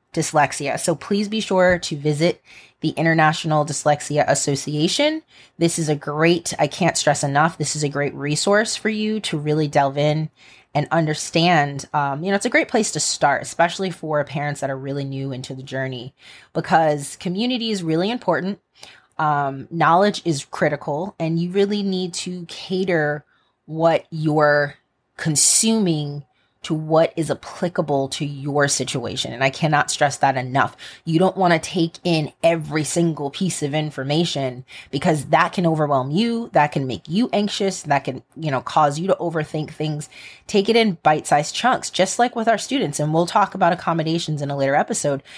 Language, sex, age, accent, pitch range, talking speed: English, female, 20-39, American, 145-185 Hz, 175 wpm